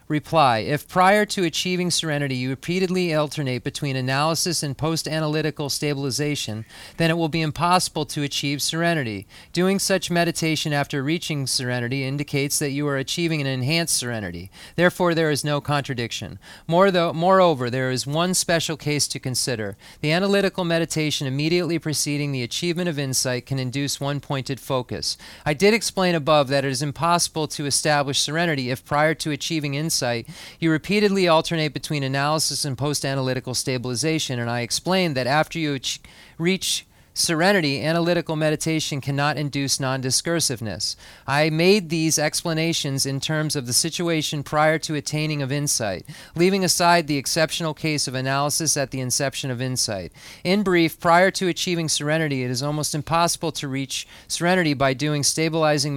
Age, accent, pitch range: 40-59, American, 135-165 Hz